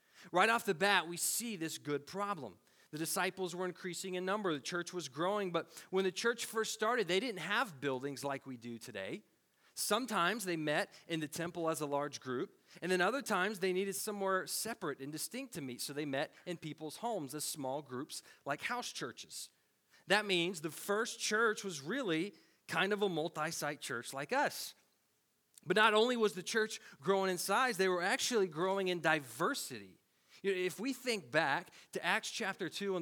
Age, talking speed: 40-59, 190 wpm